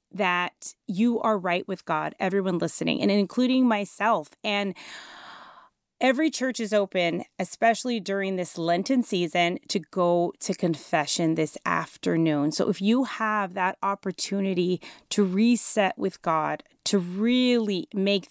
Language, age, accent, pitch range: English, 30-49, American, 175-225 Hz